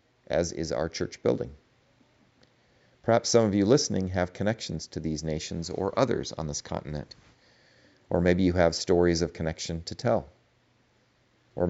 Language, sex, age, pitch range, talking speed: English, male, 40-59, 80-125 Hz, 155 wpm